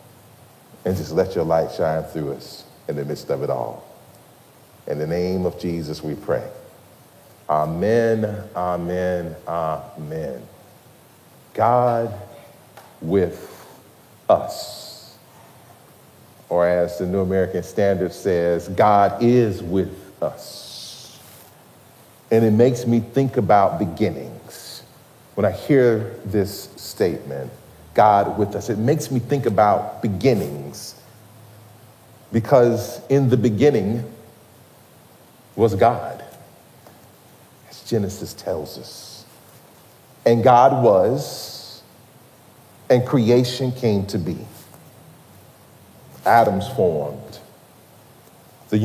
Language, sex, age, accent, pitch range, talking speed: English, male, 40-59, American, 95-125 Hz, 100 wpm